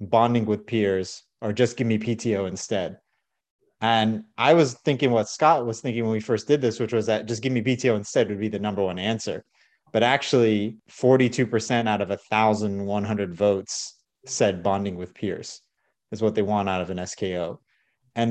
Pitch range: 105-125 Hz